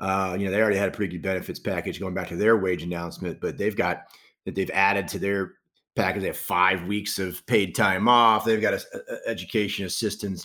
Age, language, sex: 30-49, English, male